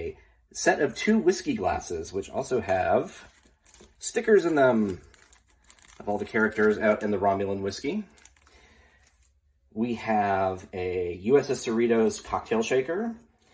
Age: 30-49